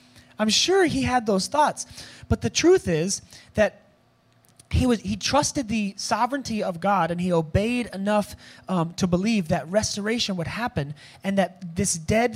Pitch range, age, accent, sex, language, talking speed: 135-195 Hz, 30-49, American, male, English, 165 wpm